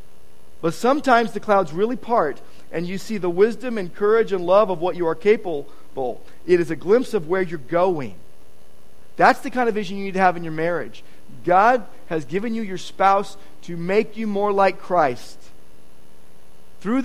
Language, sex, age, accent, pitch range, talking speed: English, male, 40-59, American, 130-205 Hz, 185 wpm